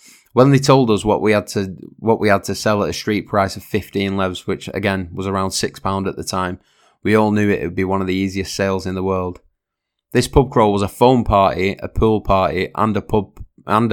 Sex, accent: male, British